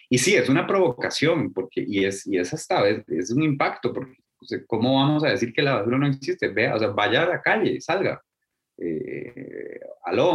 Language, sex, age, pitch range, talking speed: Spanish, male, 20-39, 105-140 Hz, 205 wpm